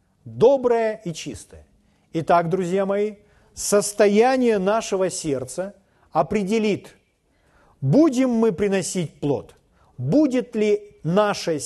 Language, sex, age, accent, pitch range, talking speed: Russian, male, 40-59, native, 140-225 Hz, 85 wpm